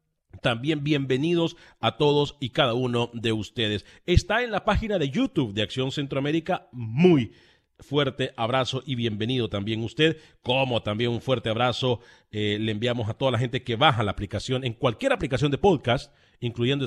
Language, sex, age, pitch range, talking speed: Spanish, male, 40-59, 105-150 Hz, 165 wpm